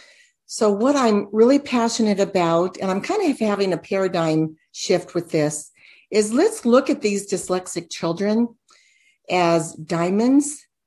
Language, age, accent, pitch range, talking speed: English, 50-69, American, 175-220 Hz, 150 wpm